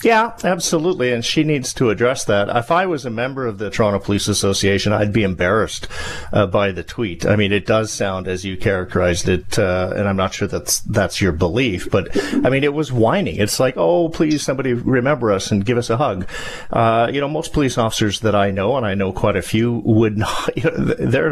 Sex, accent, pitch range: male, American, 100-125 Hz